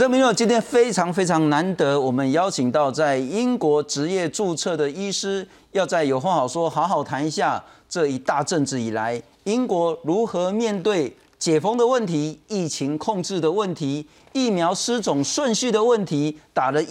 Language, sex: Chinese, male